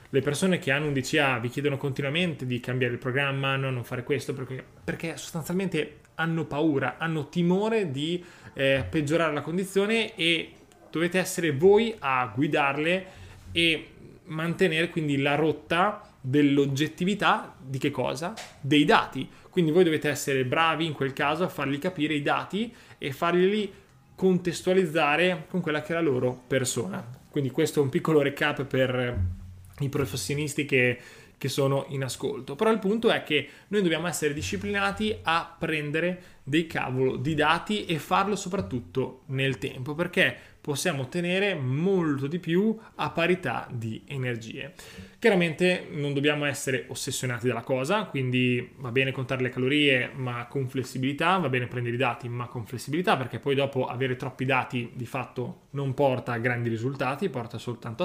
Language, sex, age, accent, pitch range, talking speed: Italian, male, 20-39, native, 130-175 Hz, 155 wpm